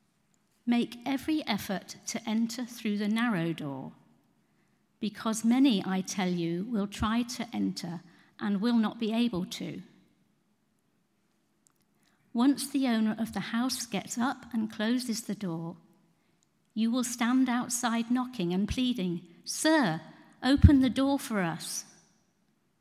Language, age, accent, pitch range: English, 50-69, British, 190-240 Hz